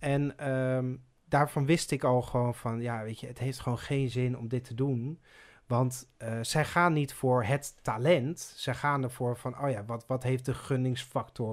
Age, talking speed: 40-59, 205 wpm